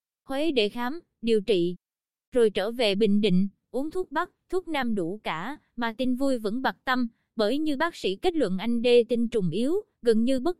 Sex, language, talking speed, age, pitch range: female, Vietnamese, 210 wpm, 20-39, 210-260 Hz